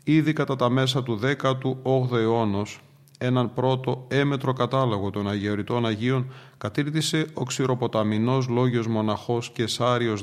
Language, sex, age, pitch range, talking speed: Greek, male, 40-59, 110-135 Hz, 115 wpm